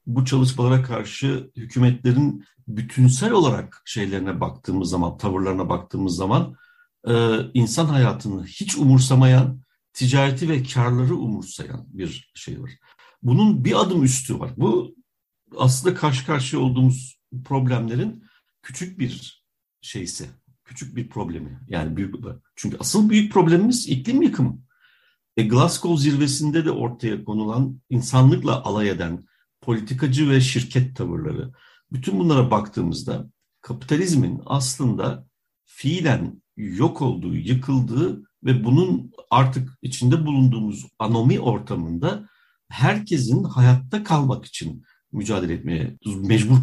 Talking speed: 105 wpm